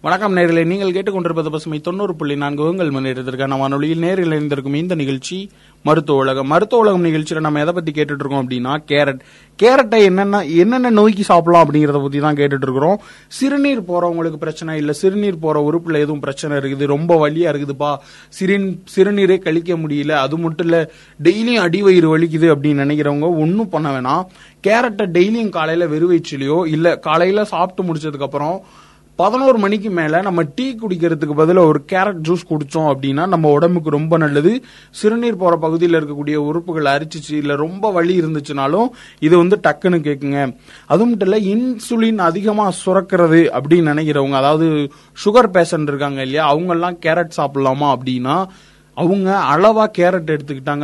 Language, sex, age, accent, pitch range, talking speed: Tamil, male, 20-39, native, 145-190 Hz, 140 wpm